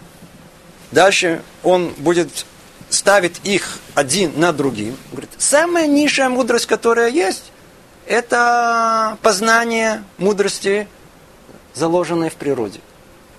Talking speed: 85 wpm